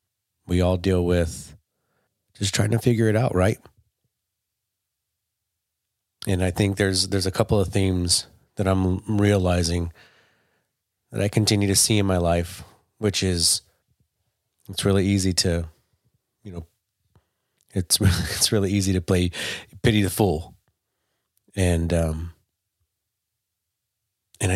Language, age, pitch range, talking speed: English, 30-49, 90-100 Hz, 125 wpm